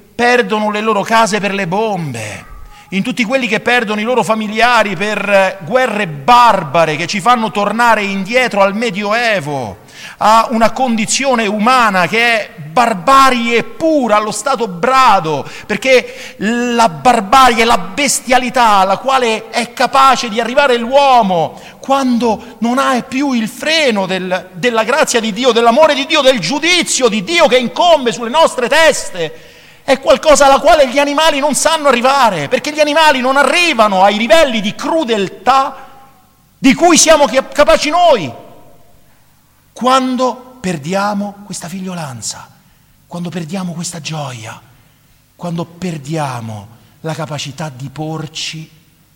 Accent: native